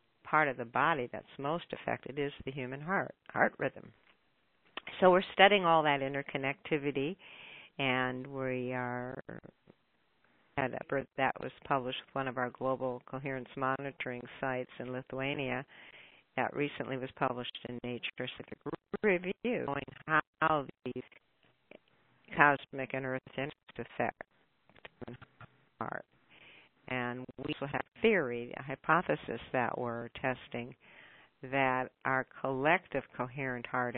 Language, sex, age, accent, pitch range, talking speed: English, female, 60-79, American, 125-140 Hz, 125 wpm